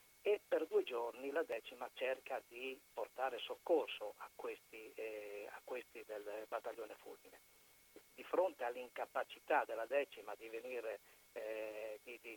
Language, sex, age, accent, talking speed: Italian, male, 50-69, native, 135 wpm